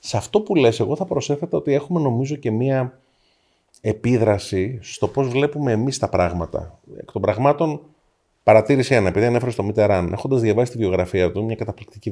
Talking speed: 175 wpm